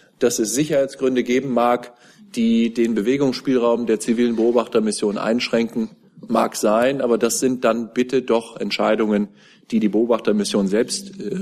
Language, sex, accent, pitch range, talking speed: German, male, German, 110-130 Hz, 130 wpm